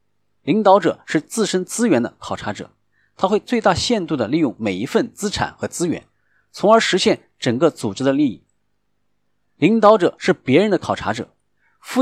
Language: Chinese